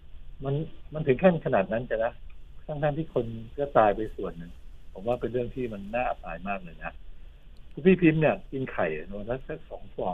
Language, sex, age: Thai, male, 60-79